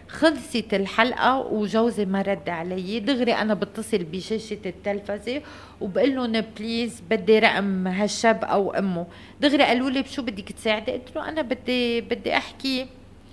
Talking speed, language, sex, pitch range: 140 wpm, Arabic, female, 185-225 Hz